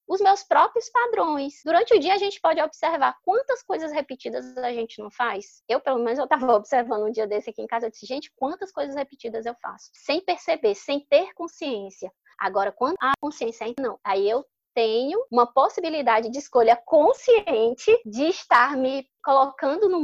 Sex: female